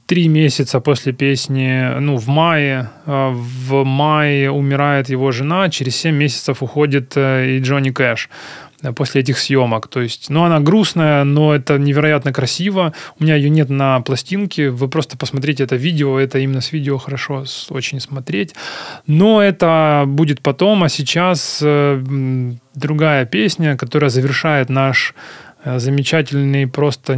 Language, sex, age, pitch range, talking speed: Ukrainian, male, 20-39, 135-155 Hz, 135 wpm